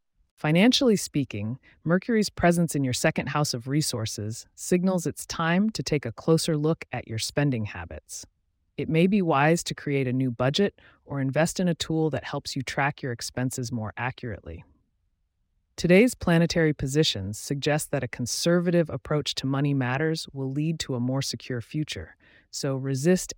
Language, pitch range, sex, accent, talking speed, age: English, 115-165 Hz, female, American, 165 wpm, 30-49